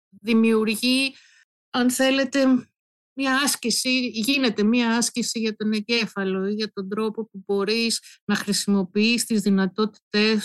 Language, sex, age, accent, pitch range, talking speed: Greek, female, 50-69, native, 195-235 Hz, 120 wpm